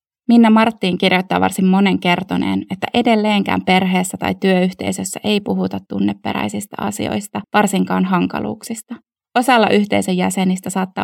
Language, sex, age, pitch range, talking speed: Finnish, female, 20-39, 175-230 Hz, 115 wpm